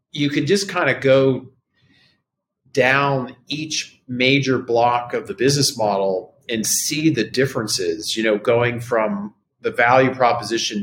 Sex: male